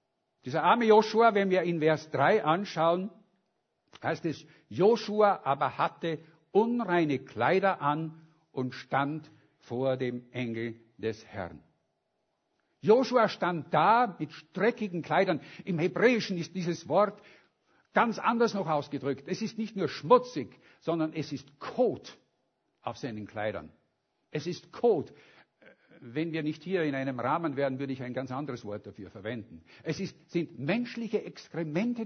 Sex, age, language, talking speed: male, 60-79, German, 140 wpm